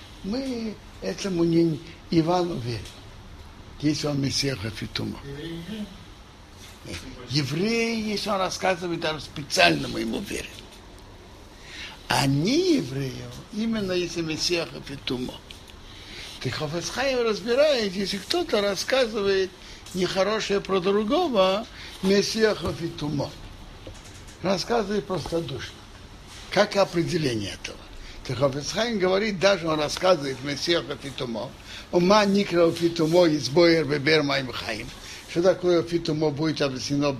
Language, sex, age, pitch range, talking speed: Russian, male, 60-79, 120-180 Hz, 90 wpm